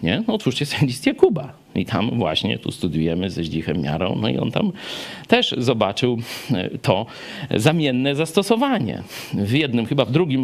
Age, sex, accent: 50-69, male, native